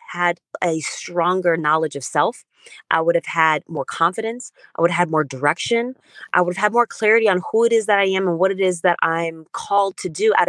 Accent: American